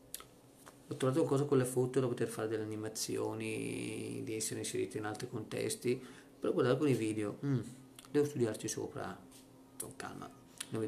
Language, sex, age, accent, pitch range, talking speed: Italian, male, 40-59, native, 110-140 Hz, 165 wpm